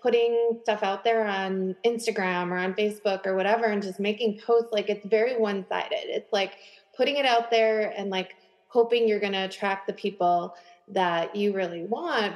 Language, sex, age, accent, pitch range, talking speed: English, female, 30-49, American, 195-230 Hz, 185 wpm